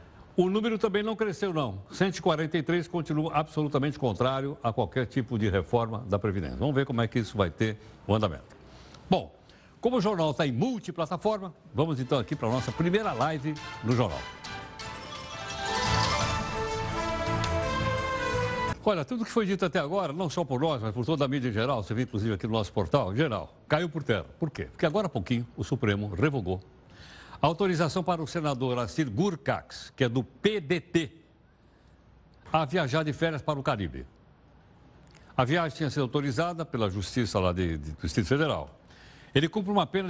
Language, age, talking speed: Portuguese, 60-79, 175 wpm